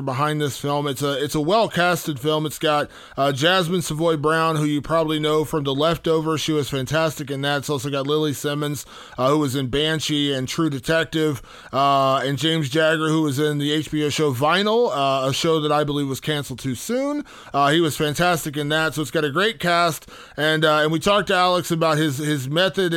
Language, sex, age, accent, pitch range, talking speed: English, male, 20-39, American, 150-185 Hz, 220 wpm